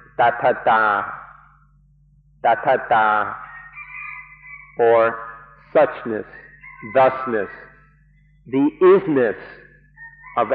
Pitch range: 125-155 Hz